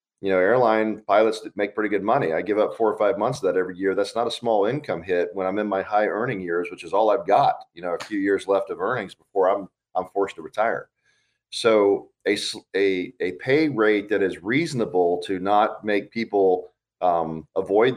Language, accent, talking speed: English, American, 220 wpm